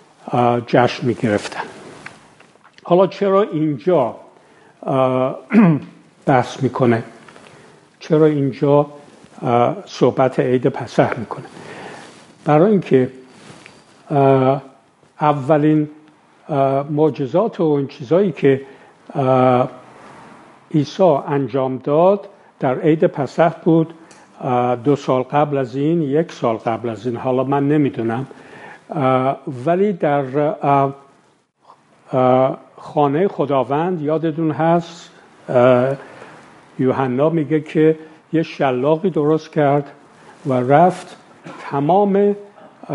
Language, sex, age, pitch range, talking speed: Persian, male, 60-79, 135-160 Hz, 90 wpm